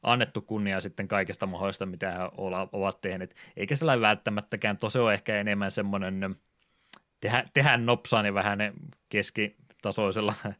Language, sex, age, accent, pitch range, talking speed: Finnish, male, 20-39, native, 95-105 Hz, 115 wpm